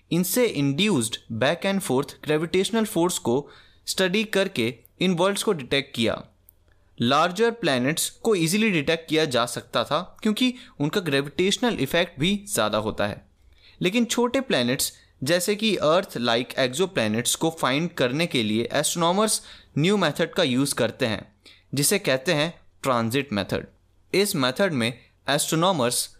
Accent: native